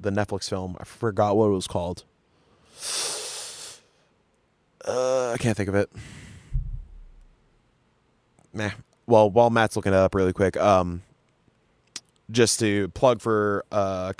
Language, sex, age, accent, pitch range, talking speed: English, male, 20-39, American, 105-125 Hz, 125 wpm